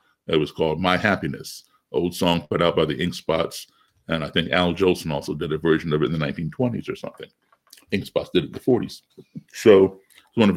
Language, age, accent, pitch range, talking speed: English, 60-79, American, 90-135 Hz, 235 wpm